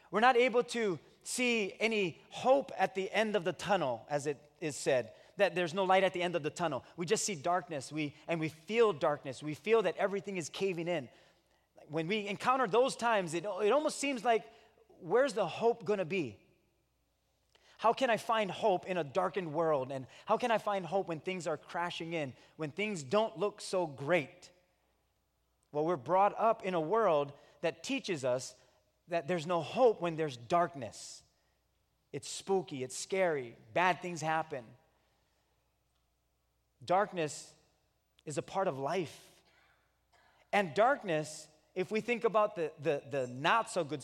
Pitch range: 150-210 Hz